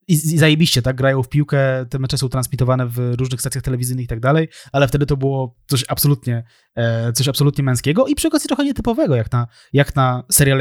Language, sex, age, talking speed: Polish, male, 20-39, 185 wpm